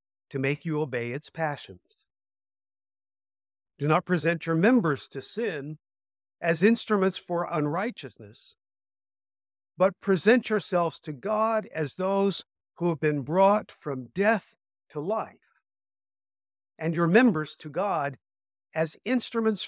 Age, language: 50-69, English